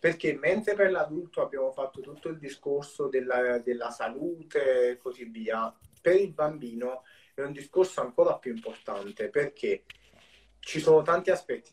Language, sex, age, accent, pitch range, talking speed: Italian, male, 30-49, native, 125-205 Hz, 150 wpm